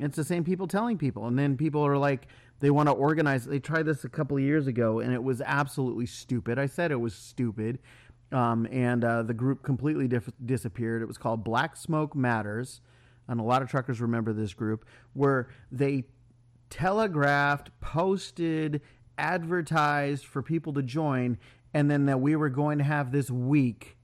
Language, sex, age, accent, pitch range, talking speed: English, male, 30-49, American, 120-150 Hz, 180 wpm